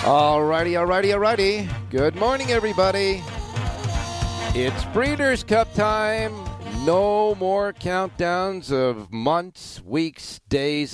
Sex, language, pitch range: male, English, 105-130 Hz